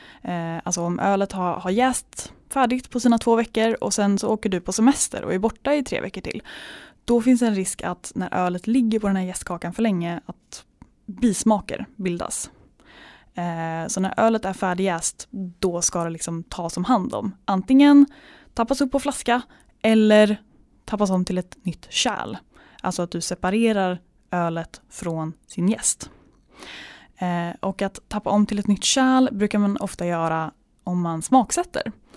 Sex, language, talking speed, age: female, Swedish, 170 wpm, 10-29